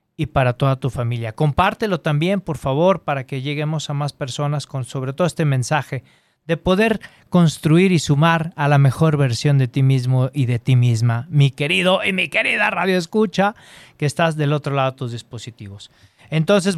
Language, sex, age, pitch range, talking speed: Spanish, male, 40-59, 135-175 Hz, 185 wpm